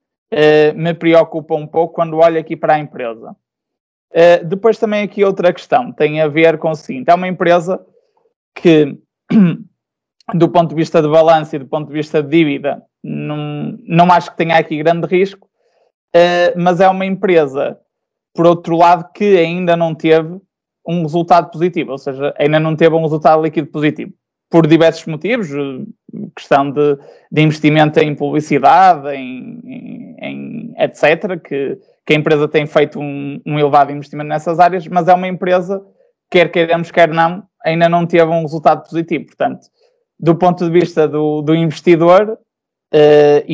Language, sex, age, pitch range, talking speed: Portuguese, male, 20-39, 155-180 Hz, 165 wpm